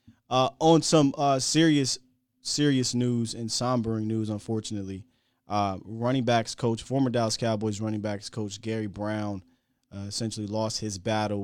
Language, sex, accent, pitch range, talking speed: English, male, American, 105-125 Hz, 145 wpm